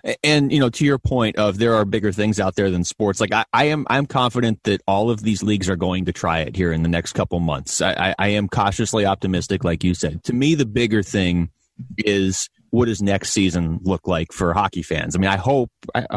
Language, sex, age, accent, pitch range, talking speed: English, male, 30-49, American, 95-115 Hz, 240 wpm